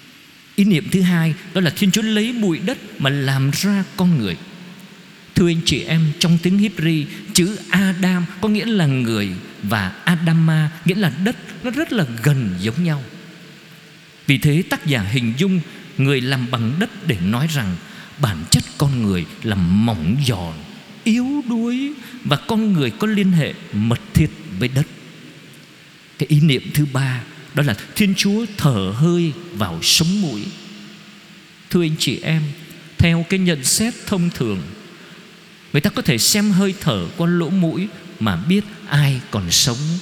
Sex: male